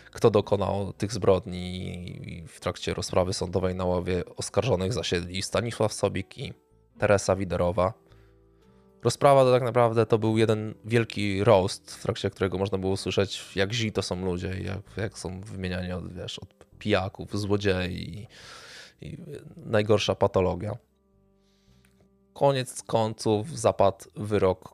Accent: native